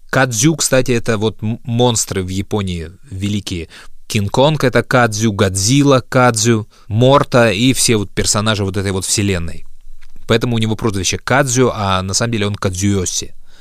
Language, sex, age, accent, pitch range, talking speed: Russian, male, 20-39, native, 100-125 Hz, 145 wpm